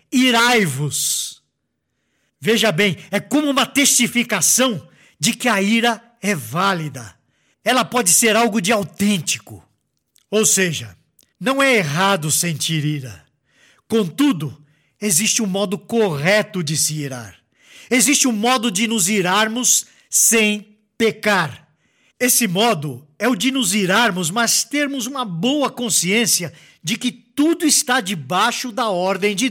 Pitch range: 175-240 Hz